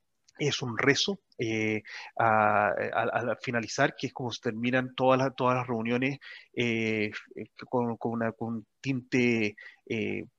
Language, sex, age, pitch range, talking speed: Spanish, male, 30-49, 125-150 Hz, 140 wpm